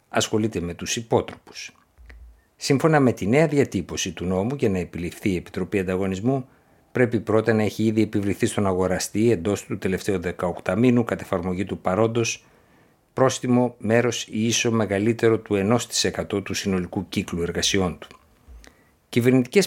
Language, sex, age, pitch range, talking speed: Greek, male, 60-79, 95-120 Hz, 145 wpm